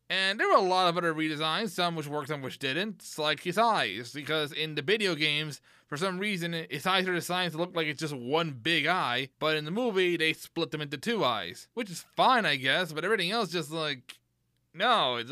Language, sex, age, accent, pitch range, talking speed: English, male, 20-39, American, 160-230 Hz, 235 wpm